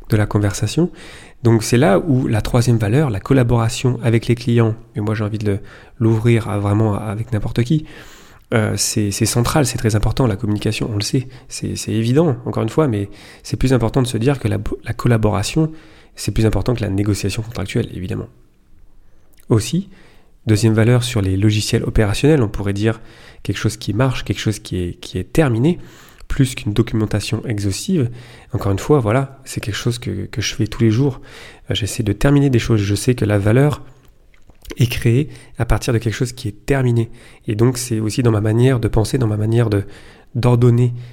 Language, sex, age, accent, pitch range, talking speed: French, male, 30-49, French, 105-125 Hz, 200 wpm